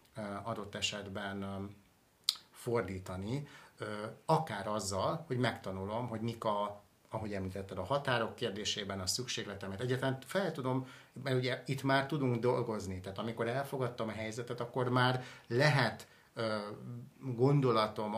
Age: 60-79